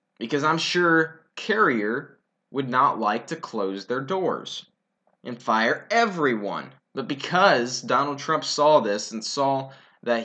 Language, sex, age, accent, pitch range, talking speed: English, male, 20-39, American, 120-155 Hz, 135 wpm